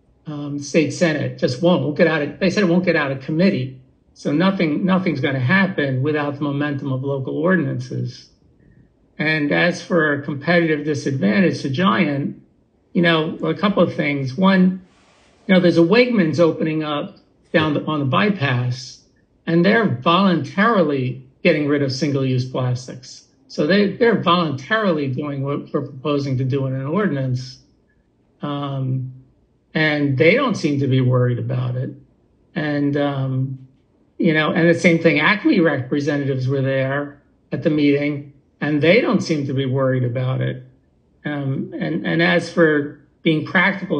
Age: 60-79